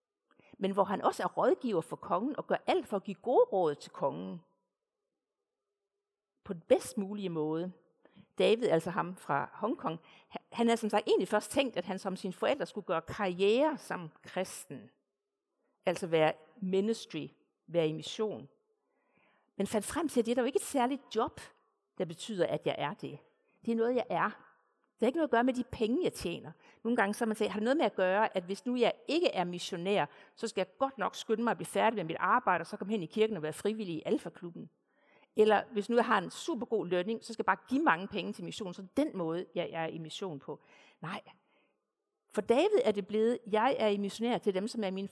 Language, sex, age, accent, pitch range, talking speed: Danish, female, 50-69, native, 185-245 Hz, 225 wpm